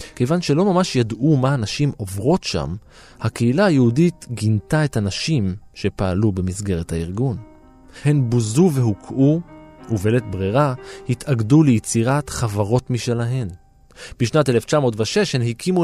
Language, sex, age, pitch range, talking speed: Hebrew, male, 20-39, 110-155 Hz, 110 wpm